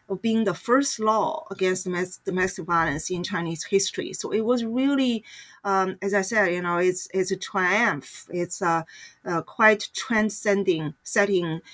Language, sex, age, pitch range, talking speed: English, female, 40-59, 185-225 Hz, 160 wpm